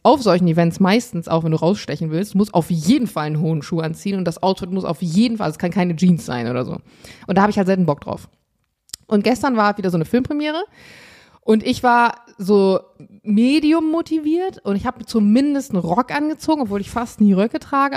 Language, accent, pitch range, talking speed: German, German, 180-240 Hz, 215 wpm